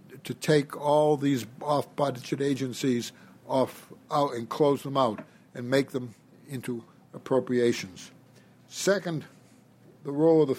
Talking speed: 130 wpm